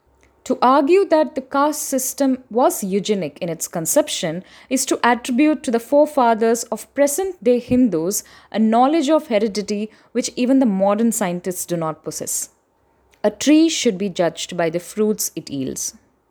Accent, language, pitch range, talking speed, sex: native, Tamil, 195-270 Hz, 155 wpm, female